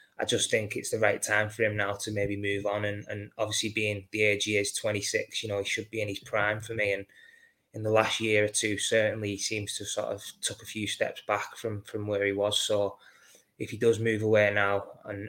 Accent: British